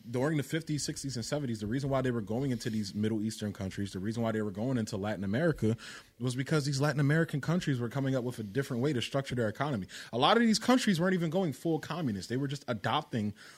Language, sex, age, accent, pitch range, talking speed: English, male, 30-49, American, 110-150 Hz, 250 wpm